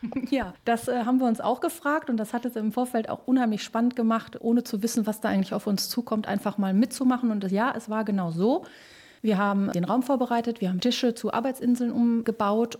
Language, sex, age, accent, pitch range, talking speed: German, female, 30-49, German, 200-240 Hz, 220 wpm